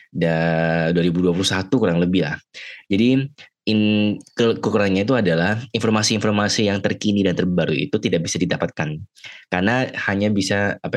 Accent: native